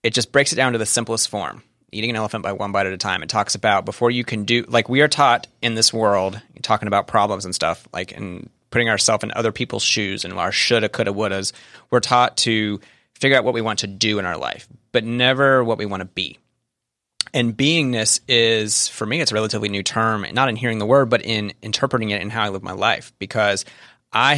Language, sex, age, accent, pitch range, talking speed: English, male, 30-49, American, 105-120 Hz, 240 wpm